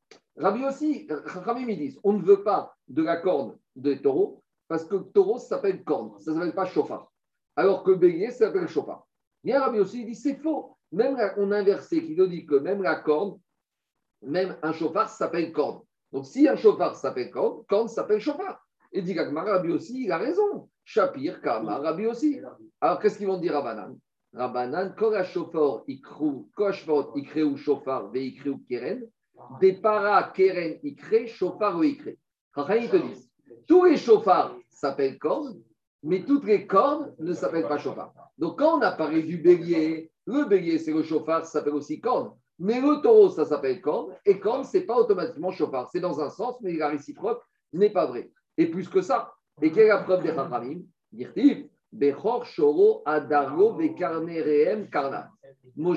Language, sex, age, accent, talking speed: French, male, 50-69, French, 175 wpm